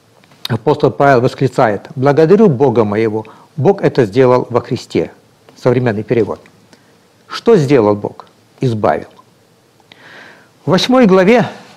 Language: Russian